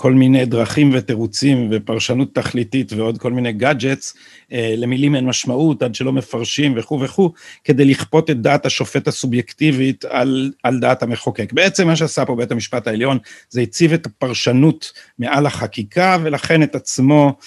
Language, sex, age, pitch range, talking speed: Hebrew, male, 50-69, 120-155 Hz, 150 wpm